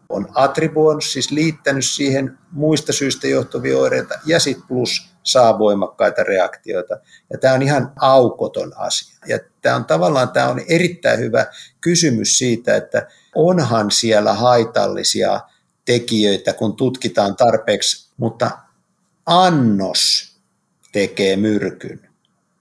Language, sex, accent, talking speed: Finnish, male, native, 110 wpm